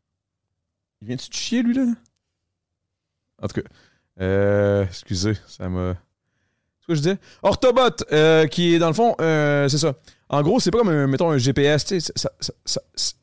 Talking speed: 185 wpm